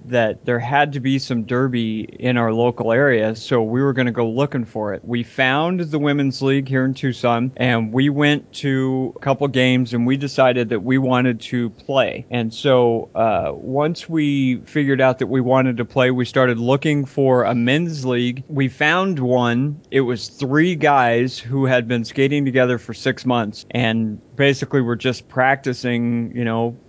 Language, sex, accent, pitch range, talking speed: English, male, American, 120-135 Hz, 185 wpm